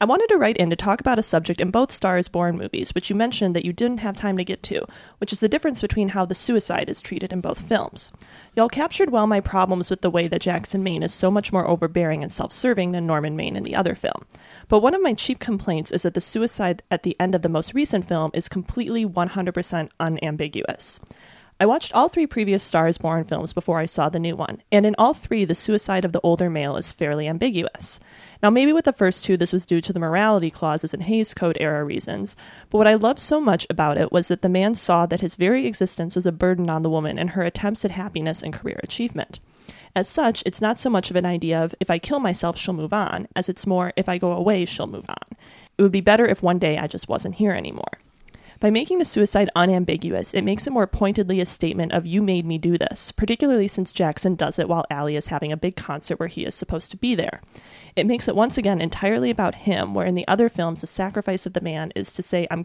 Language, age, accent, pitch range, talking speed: English, 30-49, American, 170-210 Hz, 250 wpm